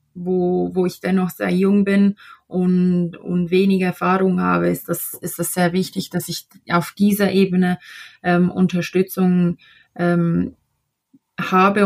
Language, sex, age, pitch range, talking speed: German, female, 20-39, 175-185 Hz, 135 wpm